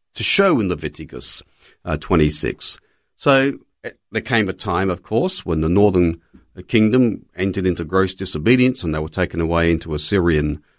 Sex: male